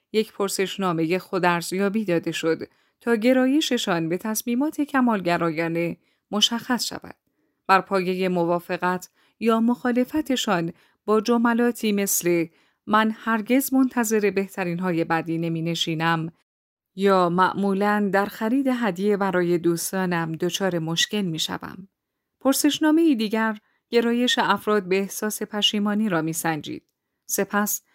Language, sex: Persian, female